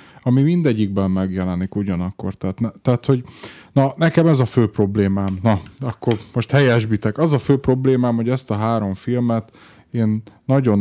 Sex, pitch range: male, 100-120 Hz